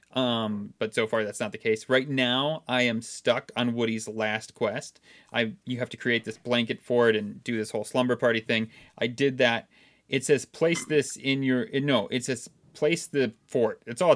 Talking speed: 210 wpm